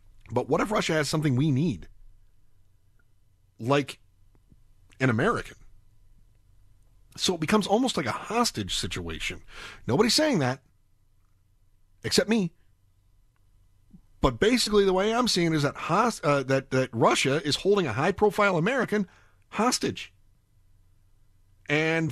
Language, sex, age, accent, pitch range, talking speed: English, male, 40-59, American, 100-160 Hz, 120 wpm